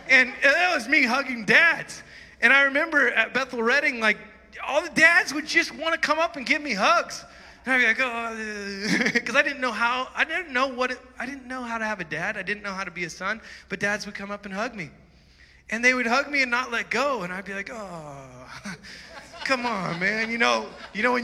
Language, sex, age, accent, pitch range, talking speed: English, male, 20-39, American, 195-255 Hz, 245 wpm